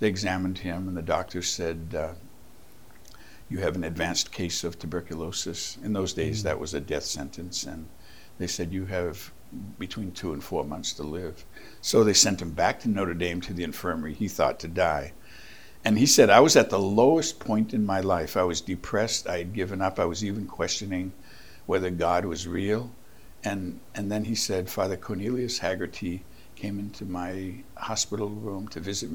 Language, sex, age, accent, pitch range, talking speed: English, male, 60-79, American, 90-105 Hz, 190 wpm